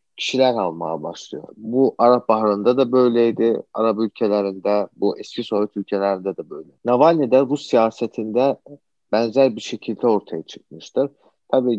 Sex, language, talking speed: male, Turkish, 125 wpm